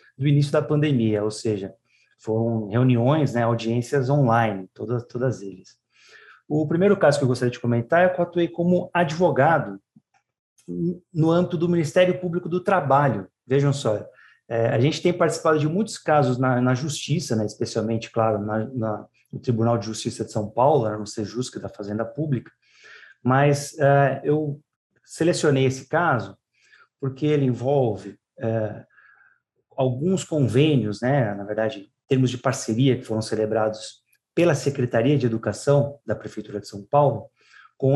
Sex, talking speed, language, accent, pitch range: male, 155 wpm, Portuguese, Brazilian, 115-150 Hz